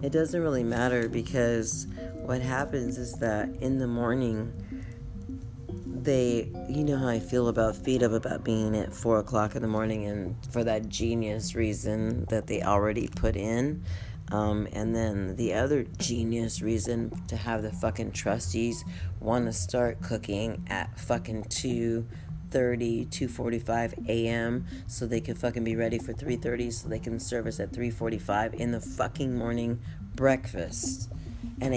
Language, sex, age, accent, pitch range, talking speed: English, female, 30-49, American, 100-120 Hz, 150 wpm